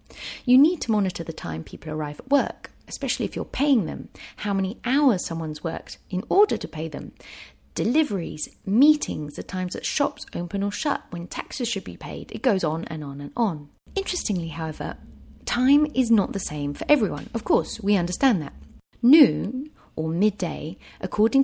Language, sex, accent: English, female, British